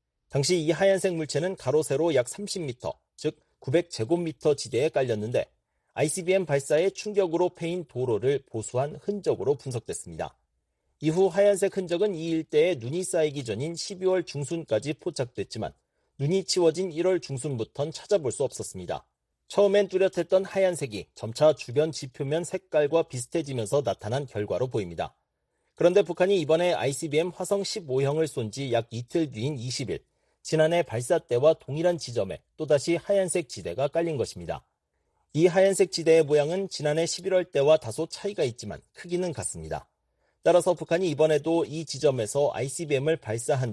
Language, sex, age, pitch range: Korean, male, 40-59, 135-180 Hz